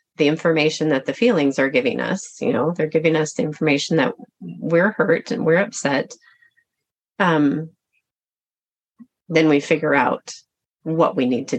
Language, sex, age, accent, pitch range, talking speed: English, female, 30-49, American, 150-185 Hz, 155 wpm